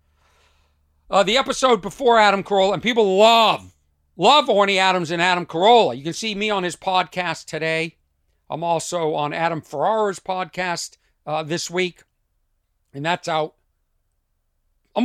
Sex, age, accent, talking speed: male, 50-69, American, 145 wpm